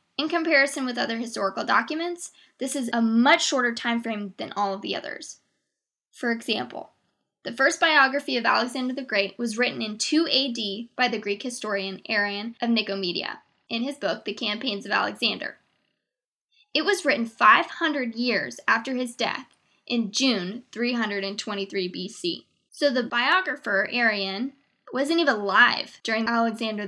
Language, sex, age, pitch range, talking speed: English, female, 10-29, 215-280 Hz, 150 wpm